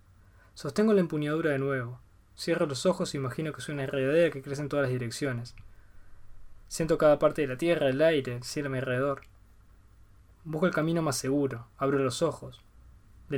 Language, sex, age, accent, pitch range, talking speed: Spanish, male, 20-39, Argentinian, 115-155 Hz, 180 wpm